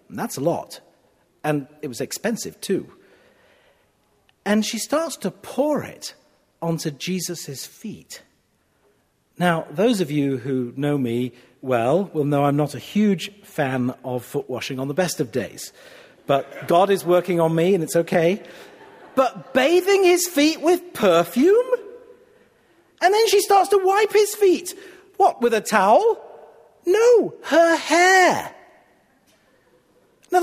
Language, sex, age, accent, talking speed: English, male, 40-59, British, 140 wpm